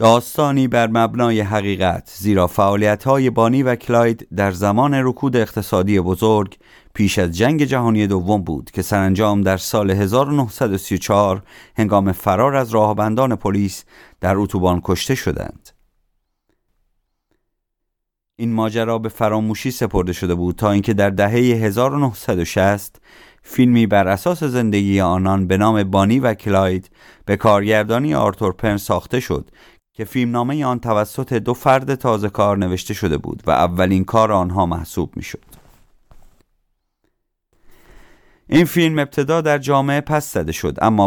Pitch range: 95-120 Hz